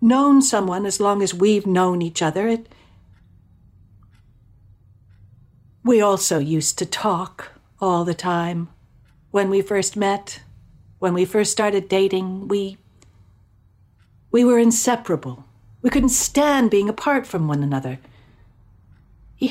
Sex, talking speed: female, 120 wpm